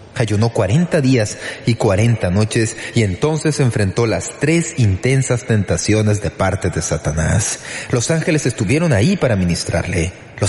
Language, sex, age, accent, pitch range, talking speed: Spanish, male, 30-49, Mexican, 95-130 Hz, 135 wpm